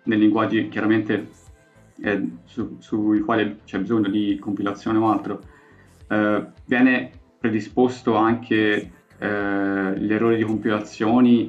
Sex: male